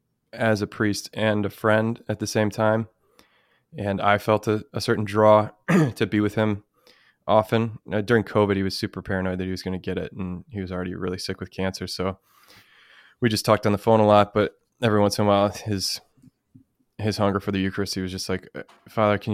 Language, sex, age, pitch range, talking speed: English, male, 20-39, 90-105 Hz, 215 wpm